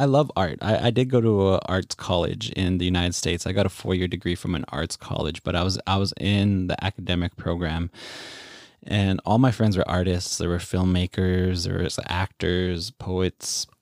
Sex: male